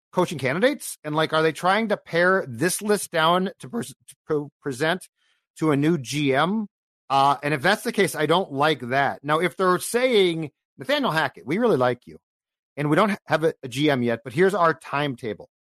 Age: 40-59